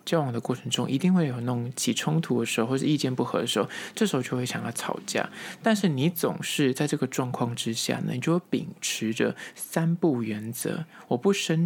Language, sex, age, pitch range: Chinese, male, 20-39, 125-165 Hz